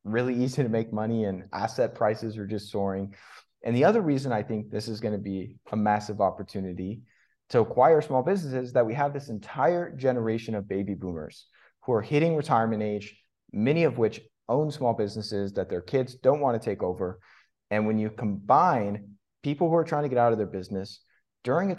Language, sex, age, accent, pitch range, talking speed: English, male, 30-49, American, 105-130 Hz, 200 wpm